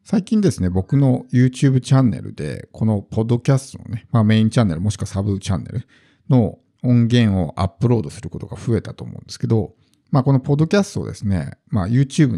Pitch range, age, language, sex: 105-145 Hz, 50-69, Japanese, male